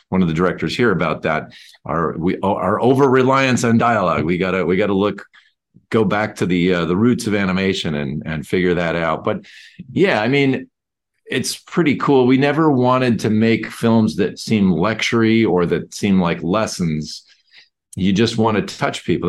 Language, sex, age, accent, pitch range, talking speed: English, male, 40-59, American, 90-115 Hz, 195 wpm